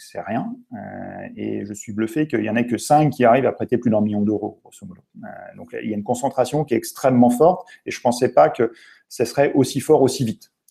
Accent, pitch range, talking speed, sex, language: French, 110-145 Hz, 245 wpm, male, French